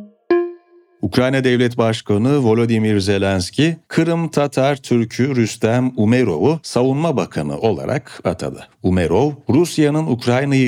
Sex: male